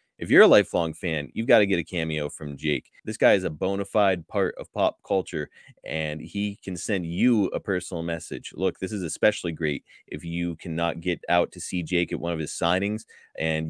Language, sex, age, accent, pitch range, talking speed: English, male, 30-49, American, 90-115 Hz, 220 wpm